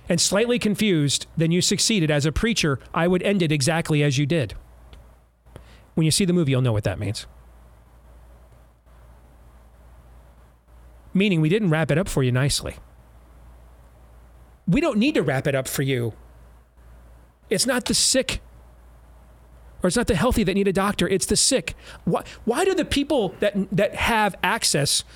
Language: English